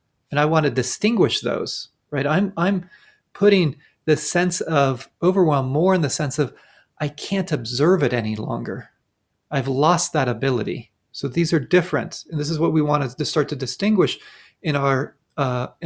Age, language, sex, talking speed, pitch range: 30-49, English, male, 175 wpm, 125-170 Hz